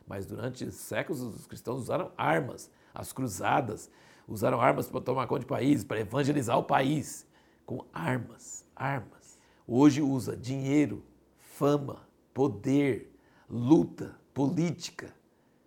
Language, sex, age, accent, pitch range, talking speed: Portuguese, male, 60-79, Brazilian, 105-130 Hz, 115 wpm